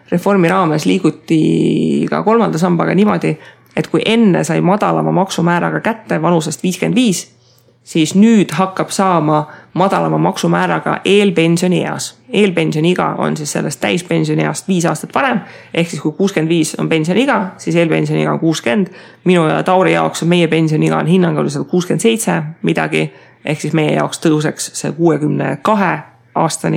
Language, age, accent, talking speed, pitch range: English, 30-49, Finnish, 135 wpm, 155-190 Hz